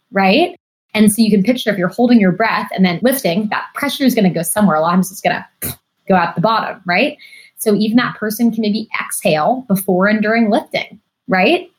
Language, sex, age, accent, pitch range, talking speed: English, female, 20-39, American, 180-220 Hz, 230 wpm